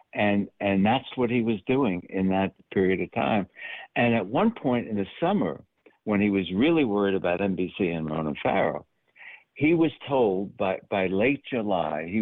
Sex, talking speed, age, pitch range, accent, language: male, 180 wpm, 60-79, 90-120 Hz, American, English